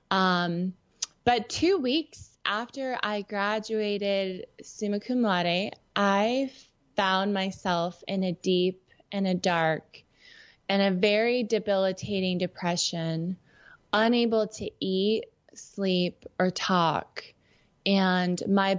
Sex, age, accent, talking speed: female, 20-39, American, 100 wpm